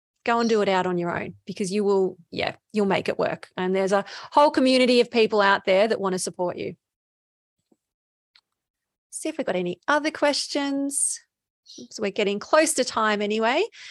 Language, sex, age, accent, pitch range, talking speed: English, female, 30-49, Australian, 195-230 Hz, 190 wpm